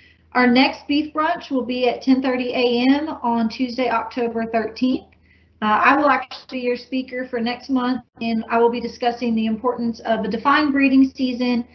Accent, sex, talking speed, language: American, female, 180 wpm, English